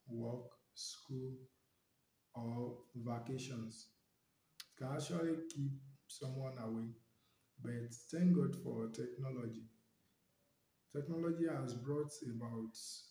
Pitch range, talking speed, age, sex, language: 120-145 Hz, 85 wpm, 50-69, male, English